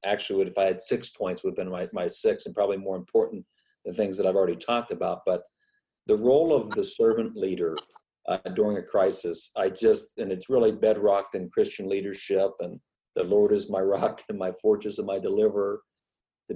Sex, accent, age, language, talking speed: male, American, 50-69, English, 205 wpm